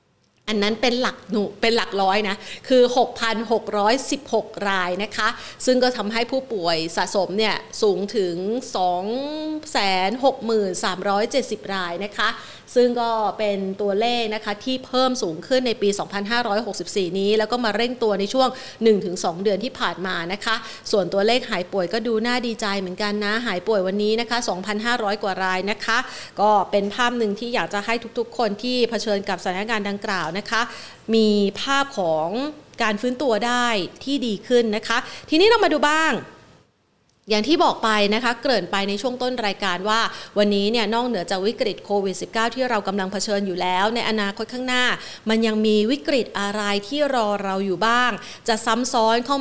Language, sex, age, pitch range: Thai, female, 30-49, 200-245 Hz